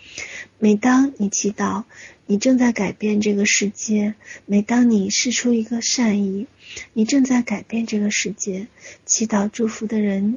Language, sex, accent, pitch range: Chinese, female, native, 205-230 Hz